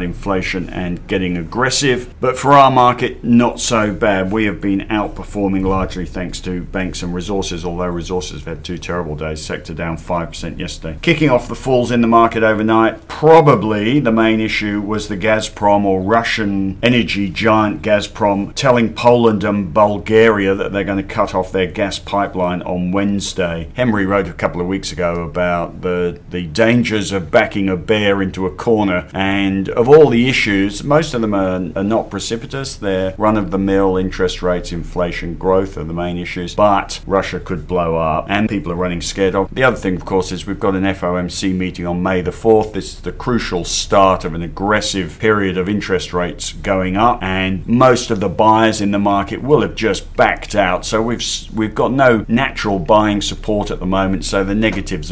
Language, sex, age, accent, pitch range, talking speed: English, male, 50-69, British, 90-110 Hz, 190 wpm